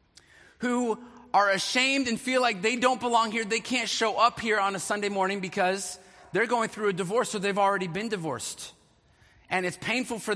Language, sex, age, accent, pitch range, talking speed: English, male, 30-49, American, 175-220 Hz, 195 wpm